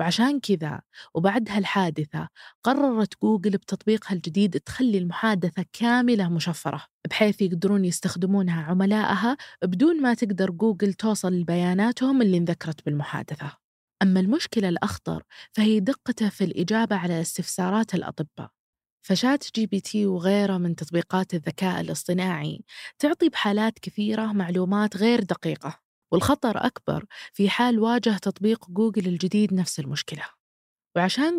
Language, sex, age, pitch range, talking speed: Arabic, female, 20-39, 180-225 Hz, 115 wpm